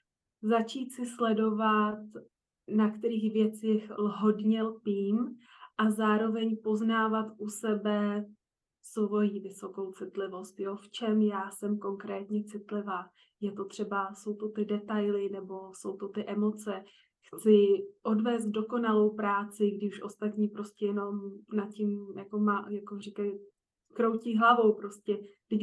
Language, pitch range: Czech, 205-220 Hz